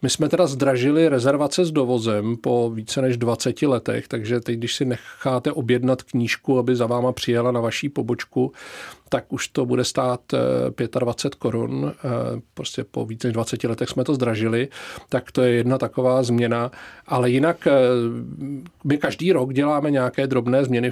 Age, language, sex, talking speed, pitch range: 40-59, Czech, male, 165 wpm, 125-145 Hz